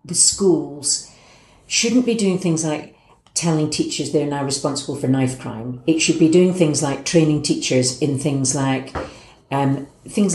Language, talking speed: English, 160 wpm